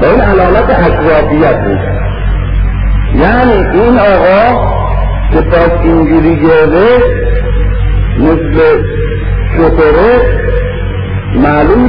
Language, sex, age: Persian, male, 50-69